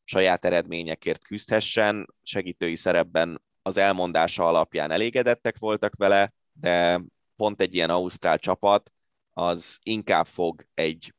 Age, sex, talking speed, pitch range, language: 20-39, male, 115 wpm, 85-100 Hz, Hungarian